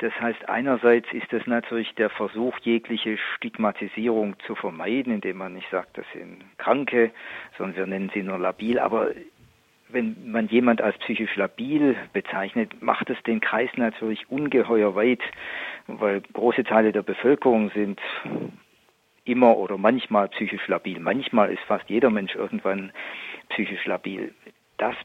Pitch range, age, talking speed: 105-125 Hz, 50-69, 145 wpm